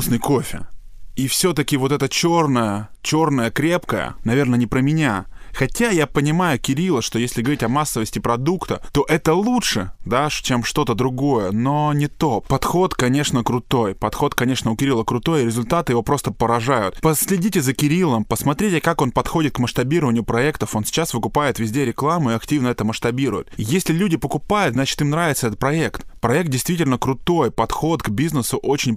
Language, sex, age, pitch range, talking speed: Russian, male, 20-39, 115-150 Hz, 165 wpm